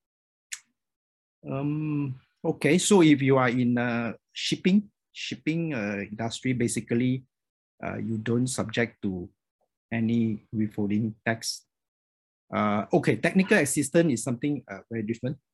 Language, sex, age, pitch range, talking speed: English, male, 50-69, 110-145 Hz, 120 wpm